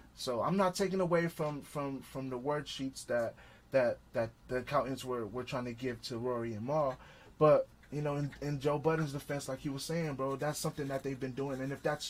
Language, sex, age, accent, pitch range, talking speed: English, male, 20-39, American, 130-160 Hz, 235 wpm